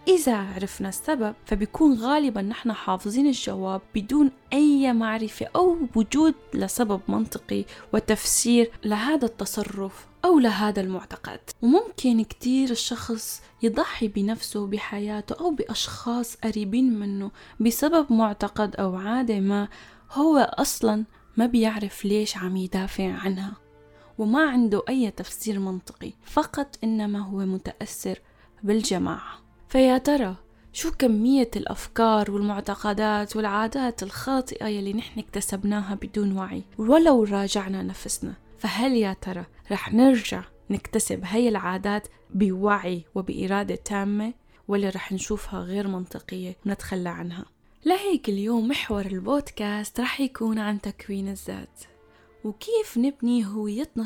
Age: 10-29